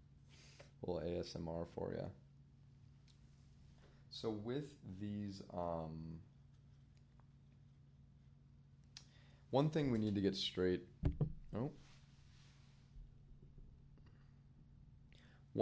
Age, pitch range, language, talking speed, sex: 30-49, 85-105 Hz, English, 60 wpm, male